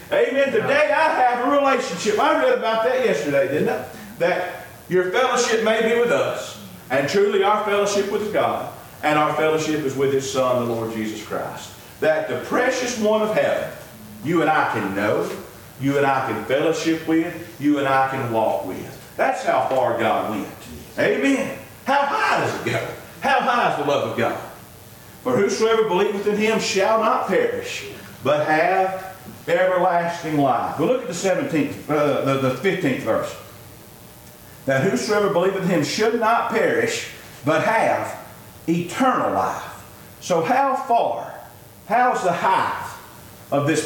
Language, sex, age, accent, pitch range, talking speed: English, male, 40-59, American, 135-220 Hz, 165 wpm